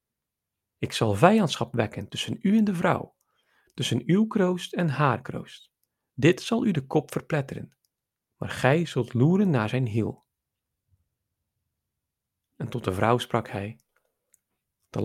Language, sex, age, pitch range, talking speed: Dutch, male, 40-59, 115-165 Hz, 140 wpm